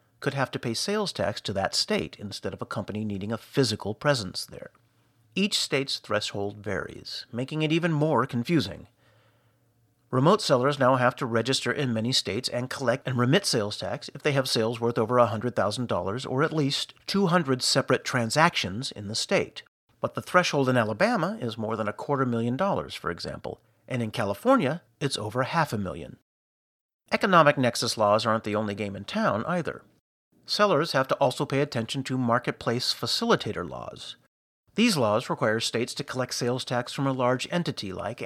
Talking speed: 175 wpm